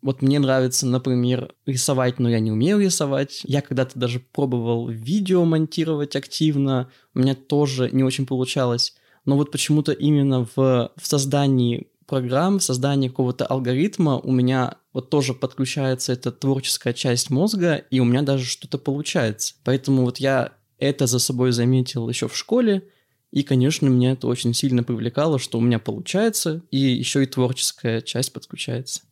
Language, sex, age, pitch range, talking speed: Russian, male, 20-39, 125-145 Hz, 160 wpm